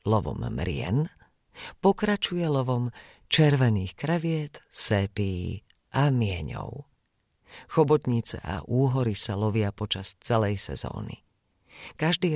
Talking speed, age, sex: 85 wpm, 40-59, female